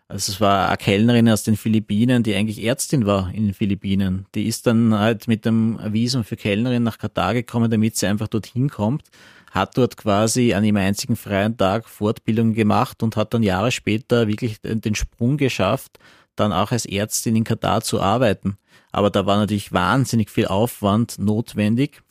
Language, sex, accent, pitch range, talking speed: German, male, Austrian, 105-120 Hz, 180 wpm